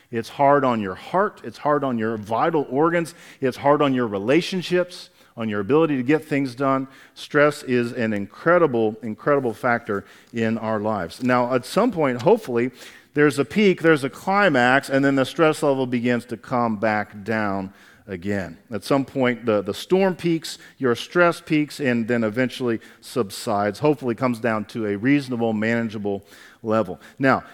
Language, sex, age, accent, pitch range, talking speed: English, male, 50-69, American, 115-155 Hz, 170 wpm